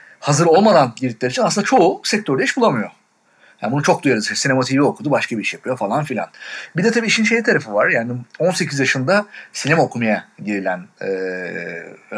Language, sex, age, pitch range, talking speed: Turkish, male, 40-59, 110-170 Hz, 175 wpm